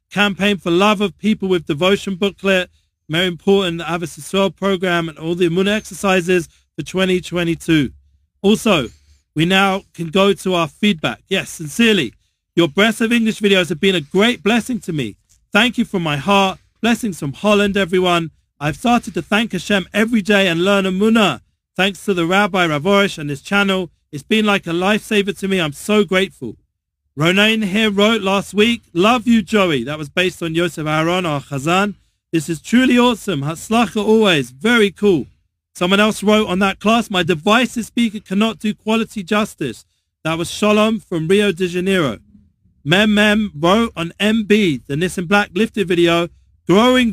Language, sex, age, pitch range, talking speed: English, male, 40-59, 165-210 Hz, 170 wpm